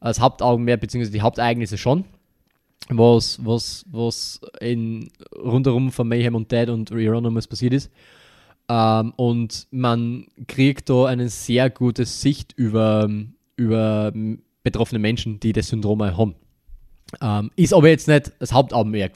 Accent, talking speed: German, 130 wpm